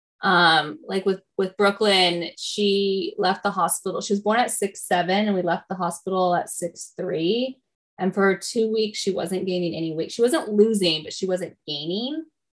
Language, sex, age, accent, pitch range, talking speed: English, female, 10-29, American, 175-205 Hz, 175 wpm